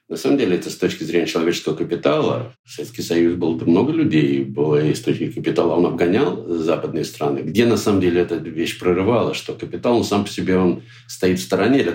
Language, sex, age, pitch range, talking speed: Russian, male, 60-79, 95-115 Hz, 215 wpm